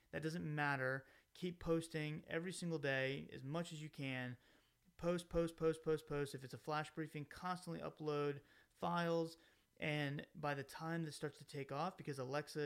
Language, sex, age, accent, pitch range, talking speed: English, male, 30-49, American, 130-155 Hz, 175 wpm